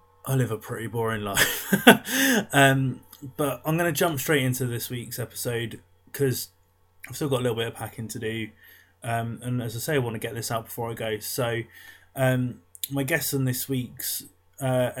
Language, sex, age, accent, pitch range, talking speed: English, male, 20-39, British, 115-135 Hz, 200 wpm